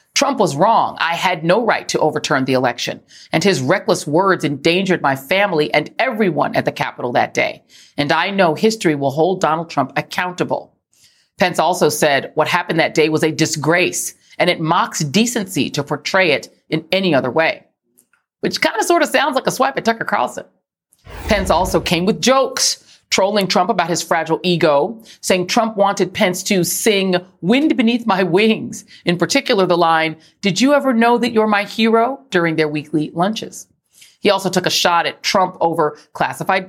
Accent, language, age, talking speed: American, English, 40-59, 185 wpm